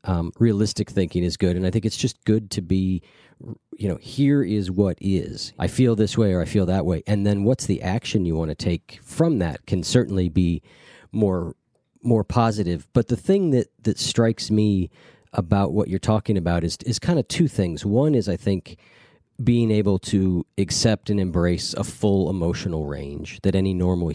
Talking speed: 200 wpm